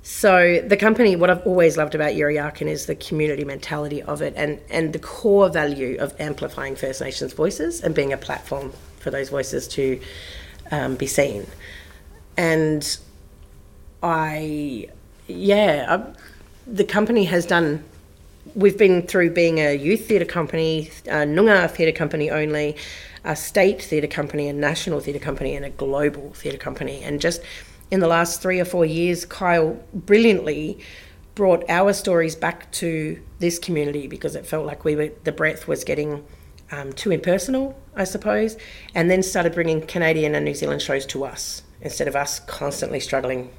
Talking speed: 165 wpm